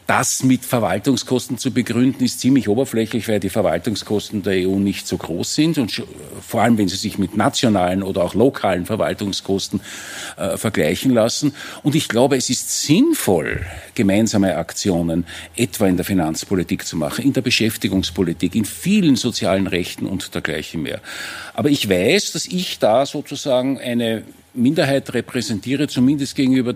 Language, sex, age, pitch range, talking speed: German, male, 50-69, 100-135 Hz, 150 wpm